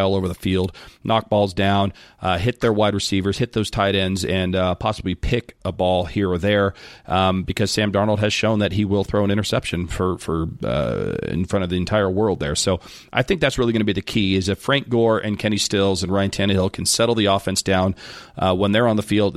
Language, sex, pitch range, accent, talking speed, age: English, male, 95-110 Hz, American, 240 wpm, 40-59